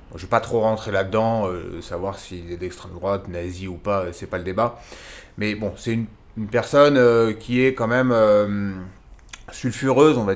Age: 30-49